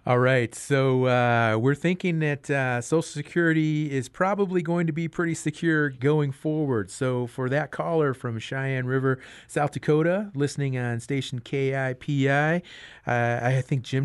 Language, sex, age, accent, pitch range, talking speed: English, male, 40-59, American, 125-160 Hz, 160 wpm